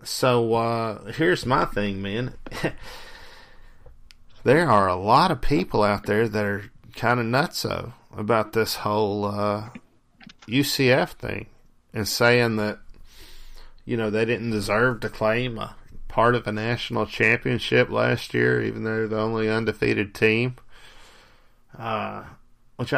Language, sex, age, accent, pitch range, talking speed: English, male, 40-59, American, 105-120 Hz, 135 wpm